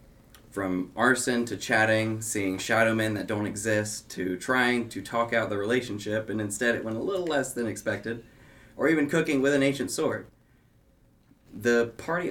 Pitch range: 100-125 Hz